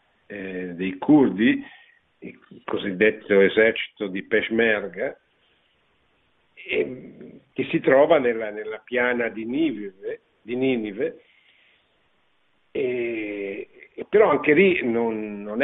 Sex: male